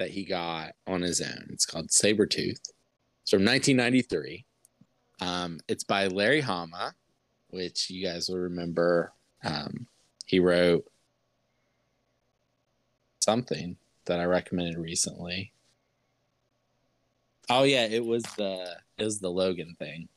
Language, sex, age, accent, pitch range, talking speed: English, male, 20-39, American, 90-120 Hz, 120 wpm